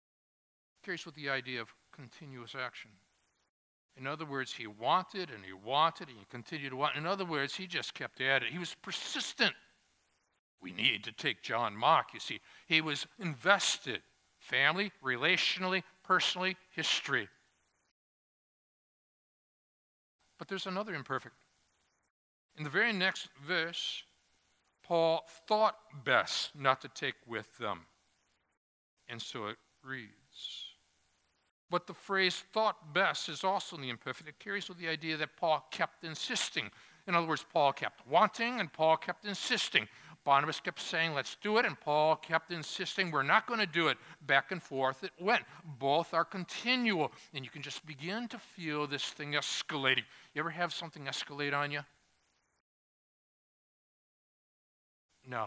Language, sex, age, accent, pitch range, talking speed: English, male, 60-79, American, 105-175 Hz, 150 wpm